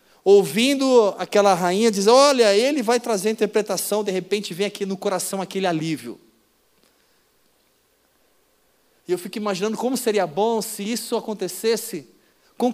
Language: Portuguese